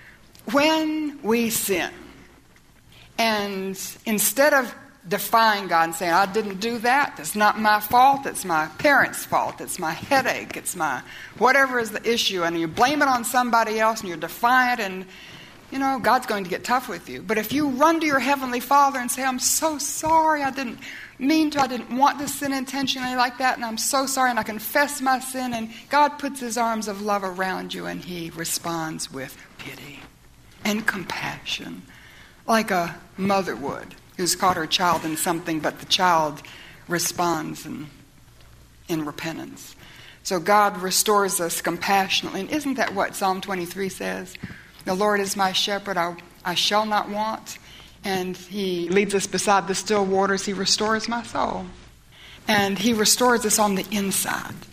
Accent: American